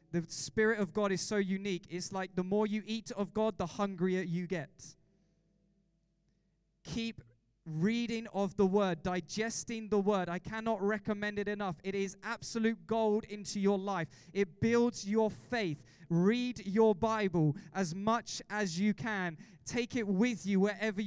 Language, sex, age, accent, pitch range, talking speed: English, male, 20-39, British, 170-215 Hz, 160 wpm